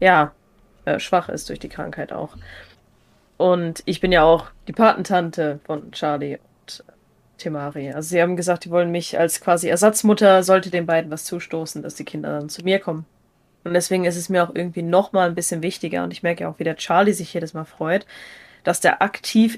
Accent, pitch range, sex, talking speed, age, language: German, 165-205 Hz, female, 200 wpm, 20-39, German